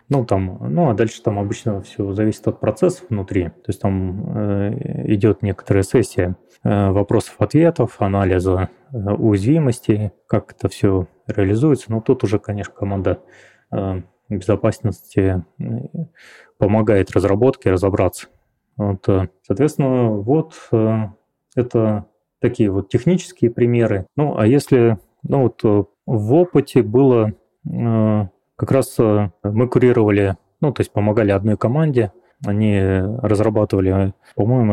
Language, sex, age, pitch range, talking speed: Russian, male, 20-39, 100-120 Hz, 125 wpm